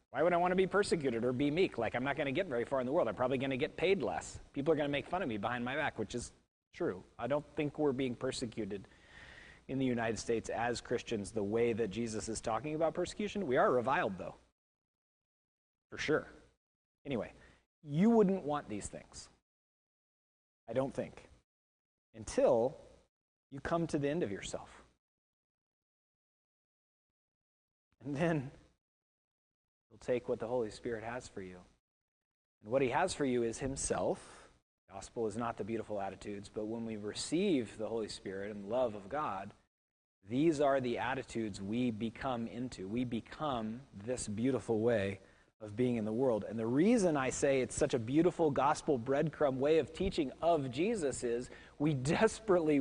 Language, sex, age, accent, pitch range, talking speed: English, male, 30-49, American, 110-145 Hz, 180 wpm